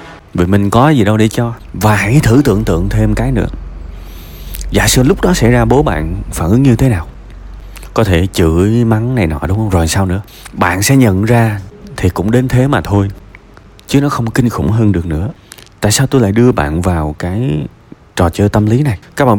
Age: 30-49